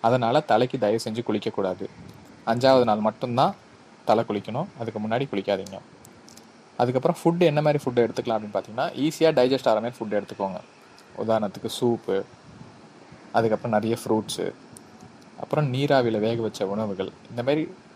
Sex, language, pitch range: male, Tamil, 110-135 Hz